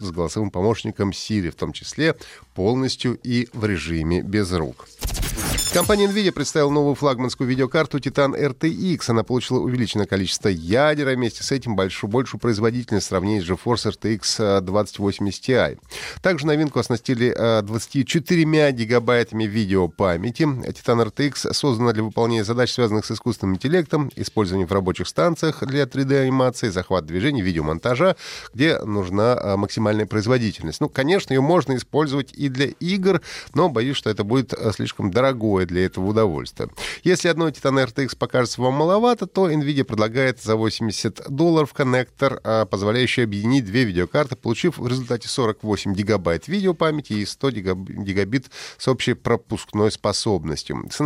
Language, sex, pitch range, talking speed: Russian, male, 105-140 Hz, 140 wpm